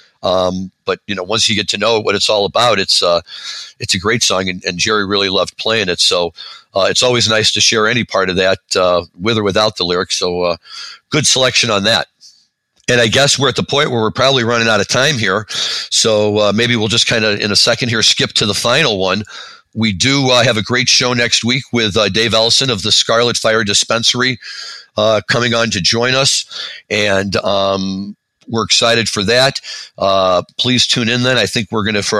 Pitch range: 95-115 Hz